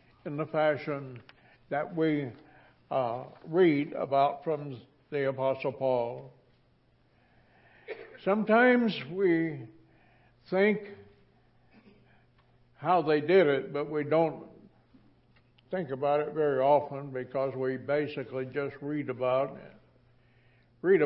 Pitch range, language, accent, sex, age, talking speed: 130-165 Hz, English, American, male, 60-79, 95 wpm